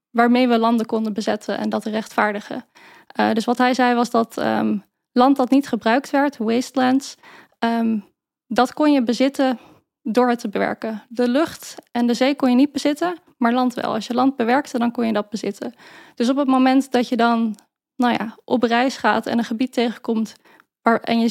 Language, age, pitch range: Dutch, 10-29, 225-260 Hz